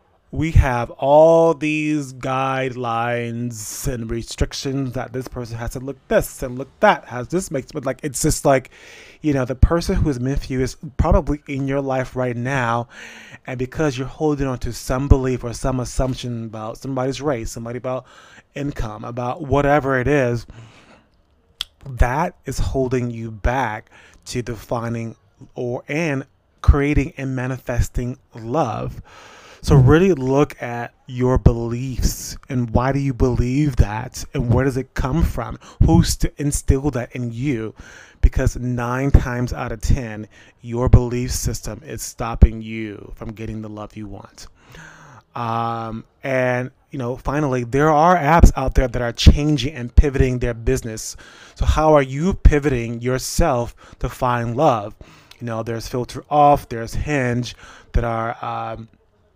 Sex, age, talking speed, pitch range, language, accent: male, 20-39, 150 wpm, 115-140 Hz, English, American